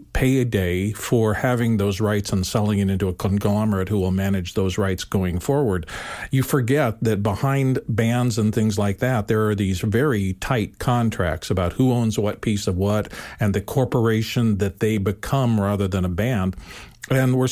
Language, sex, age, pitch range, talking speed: English, male, 50-69, 100-125 Hz, 185 wpm